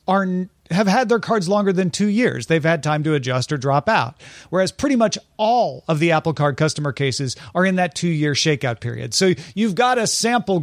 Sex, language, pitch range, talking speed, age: male, English, 135-180 Hz, 210 wpm, 40-59